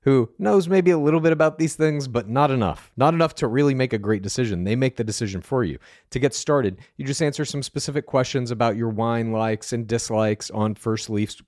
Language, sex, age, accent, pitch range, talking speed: English, male, 40-59, American, 105-135 Hz, 230 wpm